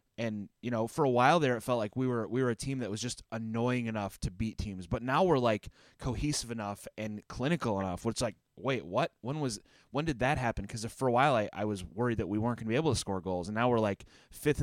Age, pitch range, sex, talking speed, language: 20-39, 105-130 Hz, male, 270 wpm, English